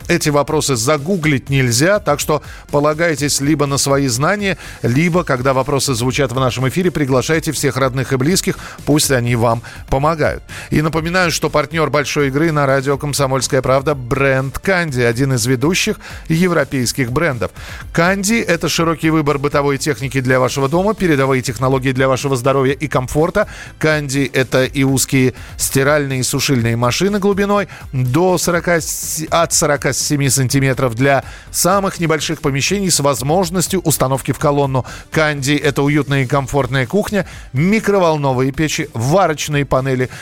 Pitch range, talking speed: 135-170 Hz, 145 wpm